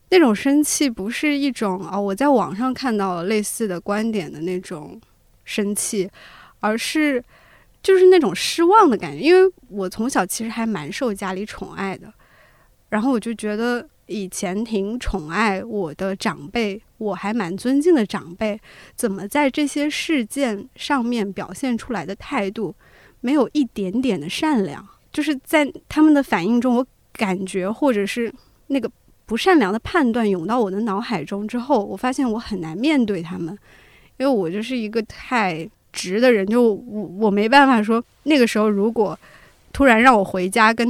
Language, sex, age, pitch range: Chinese, female, 20-39, 200-255 Hz